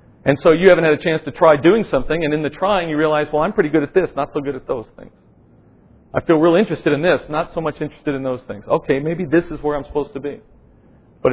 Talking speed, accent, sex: 275 wpm, American, male